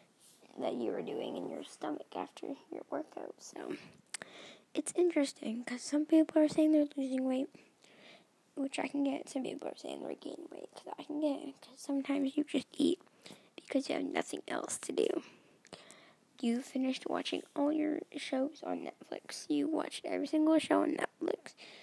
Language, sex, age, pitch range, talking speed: English, female, 10-29, 280-325 Hz, 175 wpm